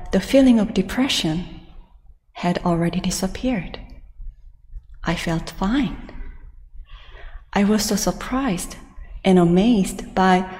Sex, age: female, 30-49